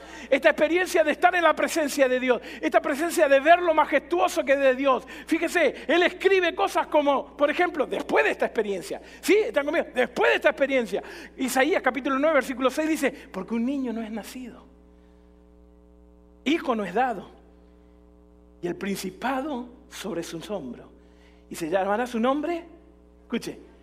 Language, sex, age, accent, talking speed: Spanish, male, 50-69, Argentinian, 165 wpm